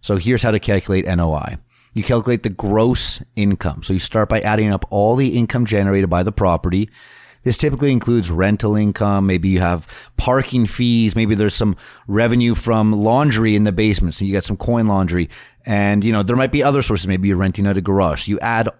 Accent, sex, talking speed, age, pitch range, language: American, male, 210 wpm, 30-49, 95-115 Hz, English